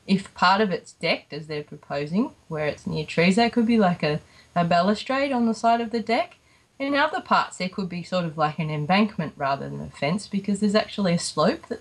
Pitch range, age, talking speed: 165-220 Hz, 20-39, 235 wpm